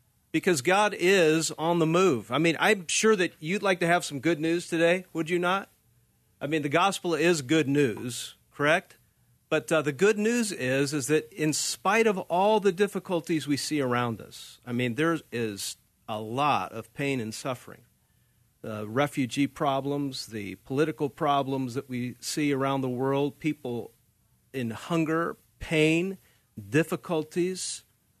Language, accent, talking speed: English, American, 160 wpm